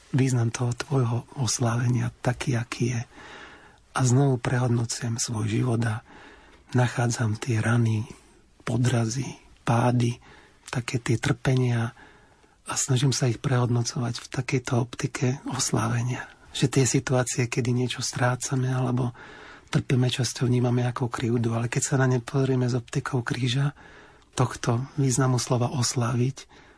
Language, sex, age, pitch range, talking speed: Slovak, male, 40-59, 120-130 Hz, 125 wpm